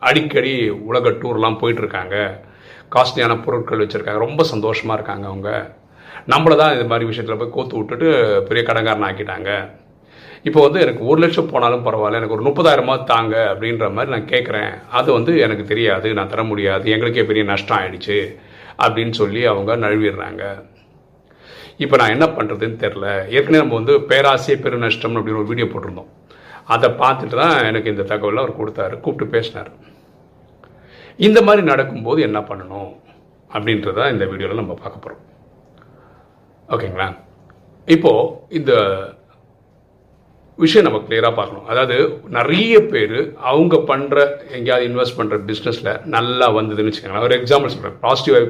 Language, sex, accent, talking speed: Tamil, male, native, 120 wpm